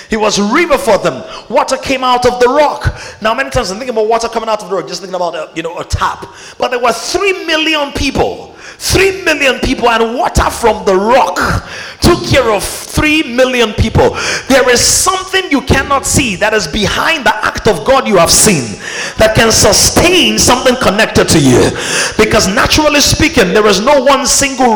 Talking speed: 200 wpm